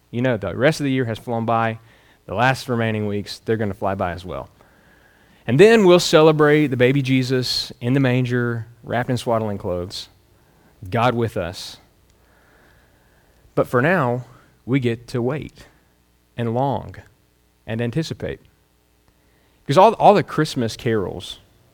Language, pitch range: English, 100-130 Hz